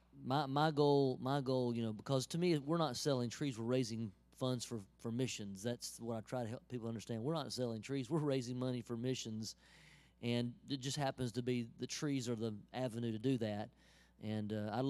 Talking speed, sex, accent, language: 220 wpm, male, American, English